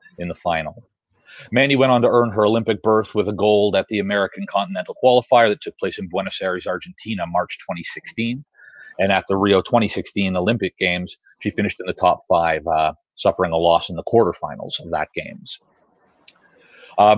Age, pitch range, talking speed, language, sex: 30-49, 95-125 Hz, 180 wpm, English, male